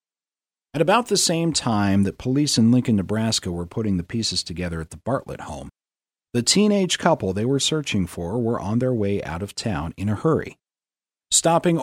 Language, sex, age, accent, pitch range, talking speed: English, male, 40-59, American, 95-140 Hz, 190 wpm